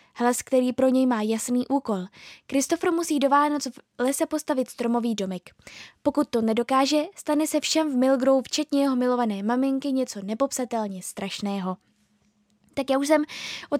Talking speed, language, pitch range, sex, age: 155 wpm, Czech, 240-285 Hz, female, 10-29